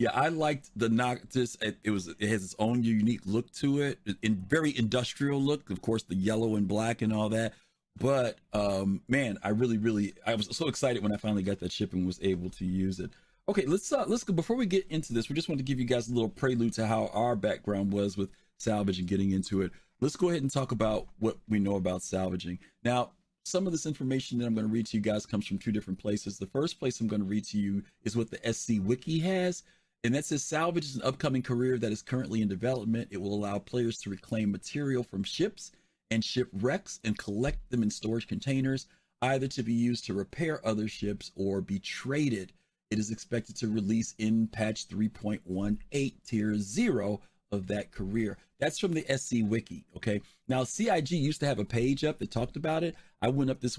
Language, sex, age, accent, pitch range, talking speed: English, male, 40-59, American, 105-135 Hz, 225 wpm